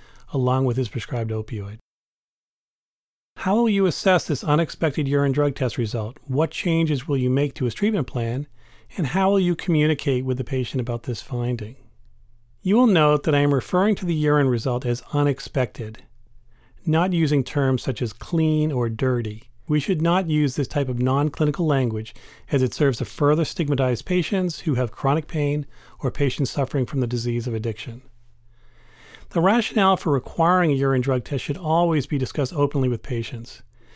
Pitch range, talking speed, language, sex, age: 120-155 Hz, 175 wpm, English, male, 40-59